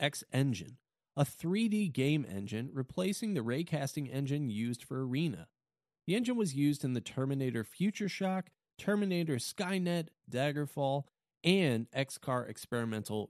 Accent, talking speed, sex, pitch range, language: American, 120 wpm, male, 120-185 Hz, English